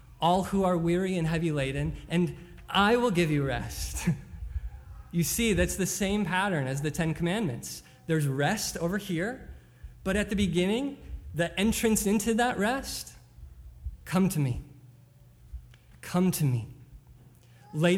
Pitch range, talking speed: 120-170 Hz, 145 wpm